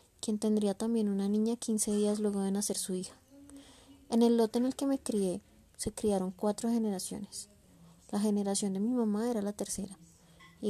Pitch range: 195-225 Hz